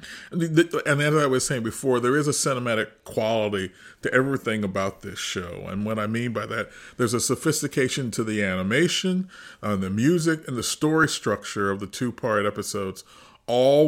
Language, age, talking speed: English, 40-59, 175 wpm